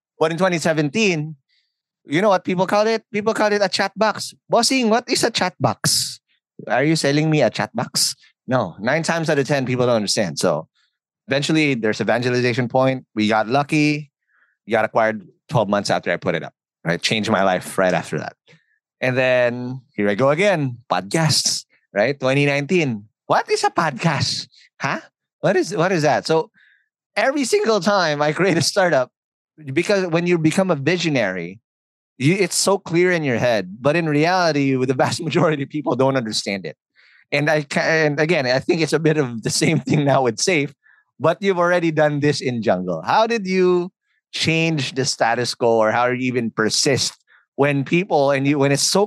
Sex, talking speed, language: male, 190 wpm, English